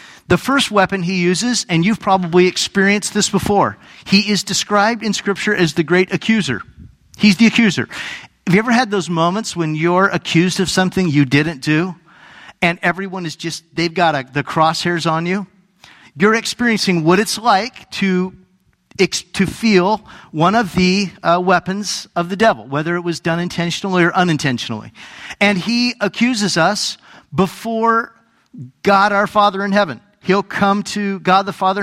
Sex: male